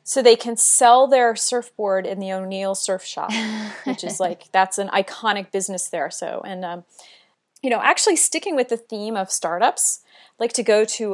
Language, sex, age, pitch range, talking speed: English, female, 30-49, 180-240 Hz, 195 wpm